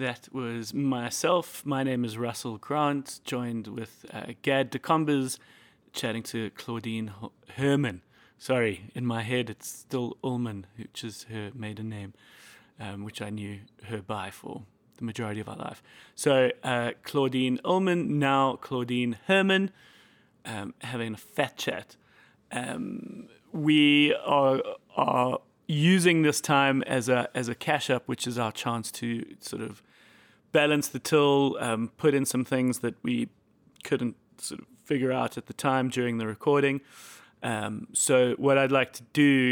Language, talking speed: English, 150 wpm